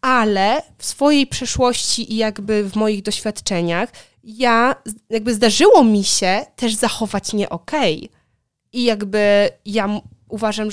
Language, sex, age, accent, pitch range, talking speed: Polish, female, 20-39, native, 205-260 Hz, 125 wpm